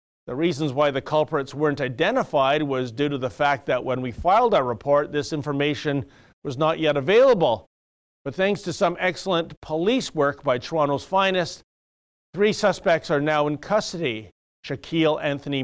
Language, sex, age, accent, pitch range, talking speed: English, male, 40-59, American, 135-180 Hz, 160 wpm